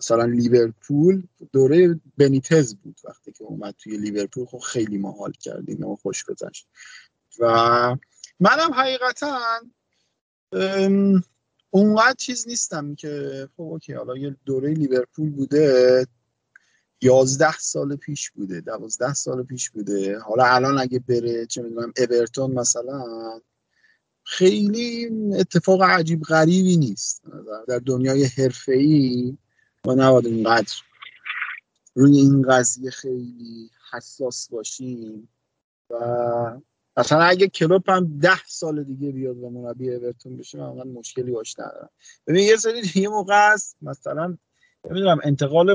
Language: Persian